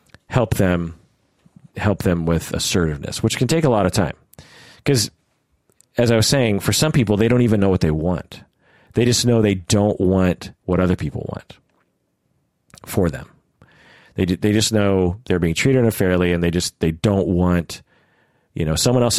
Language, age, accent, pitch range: English, 40-59, American, 85-110 Hz